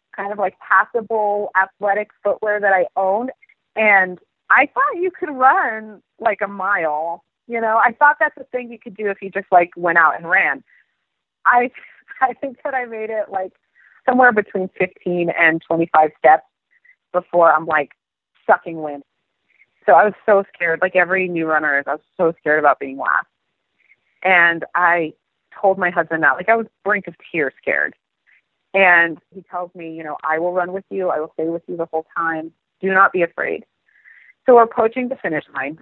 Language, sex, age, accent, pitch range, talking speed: English, female, 30-49, American, 165-210 Hz, 190 wpm